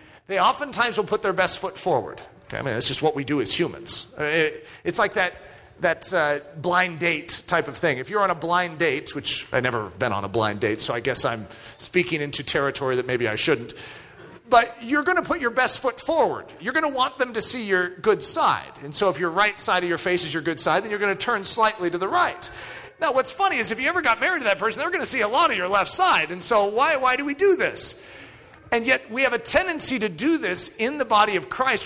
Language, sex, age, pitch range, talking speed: English, male, 40-59, 160-245 Hz, 260 wpm